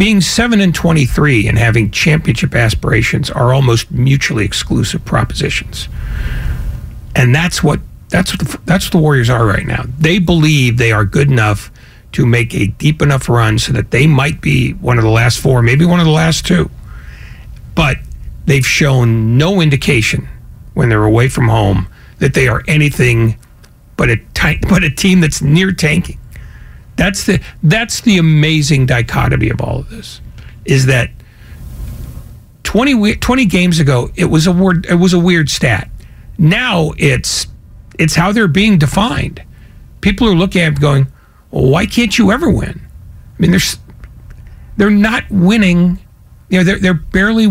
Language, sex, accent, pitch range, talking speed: English, male, American, 120-180 Hz, 165 wpm